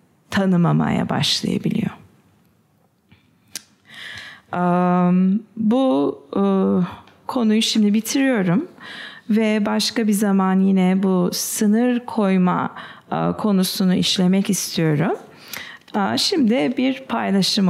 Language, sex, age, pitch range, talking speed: English, female, 40-59, 195-260 Hz, 70 wpm